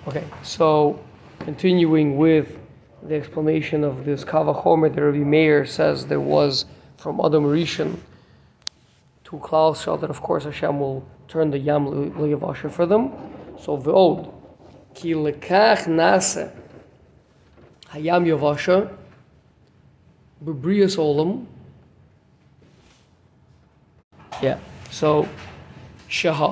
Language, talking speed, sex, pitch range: English, 100 wpm, male, 150-180 Hz